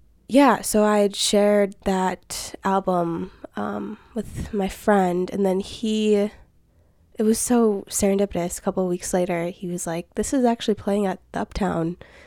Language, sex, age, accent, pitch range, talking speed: English, female, 20-39, American, 175-205 Hz, 155 wpm